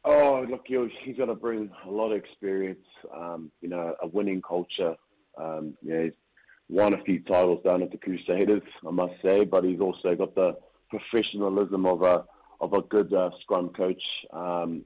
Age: 30-49